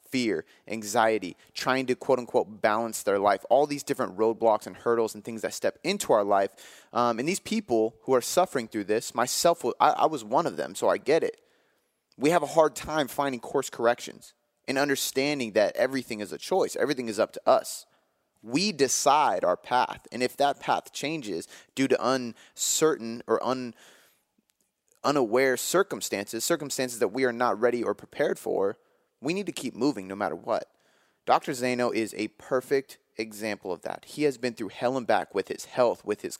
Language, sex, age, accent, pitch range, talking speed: English, male, 30-49, American, 115-140 Hz, 185 wpm